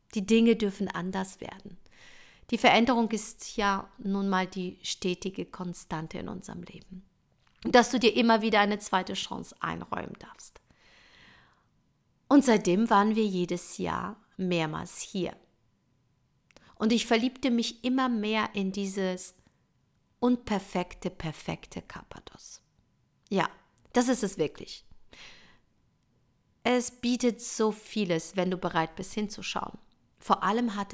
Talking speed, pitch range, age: 125 wpm, 185-230 Hz, 50-69